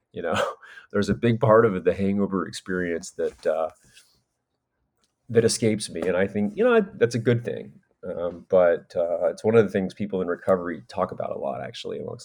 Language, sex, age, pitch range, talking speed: English, male, 30-49, 90-115 Hz, 200 wpm